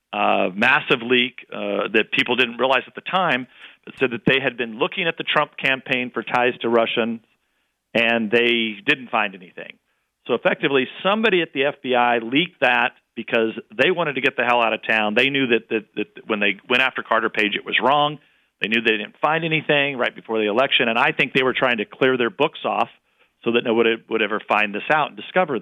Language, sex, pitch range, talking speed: English, male, 115-145 Hz, 225 wpm